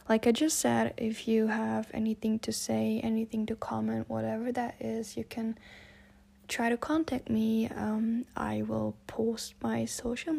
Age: 10-29